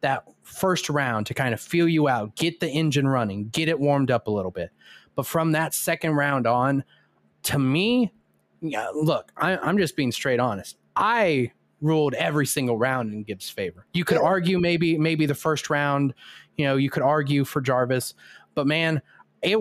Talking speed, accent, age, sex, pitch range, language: 185 wpm, American, 30-49, male, 120-155 Hz, English